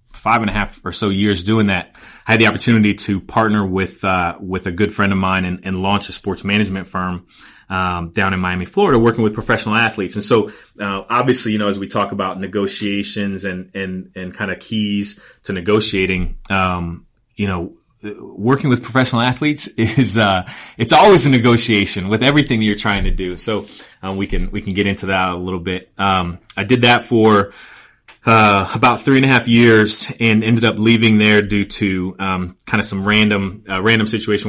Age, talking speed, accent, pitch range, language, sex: 30-49, 205 wpm, American, 95-110 Hz, English, male